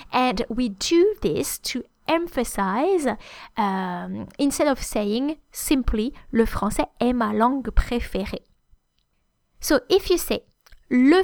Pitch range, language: 210-280 Hz, English